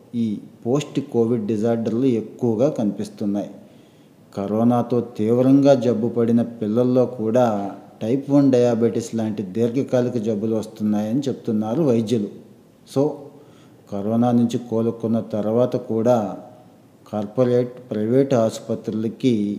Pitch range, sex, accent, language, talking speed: 110-130 Hz, male, native, Telugu, 90 wpm